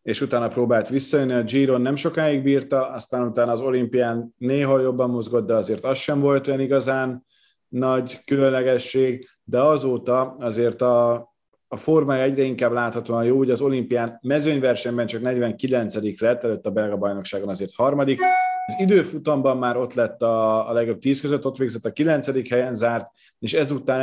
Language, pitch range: Hungarian, 110-135 Hz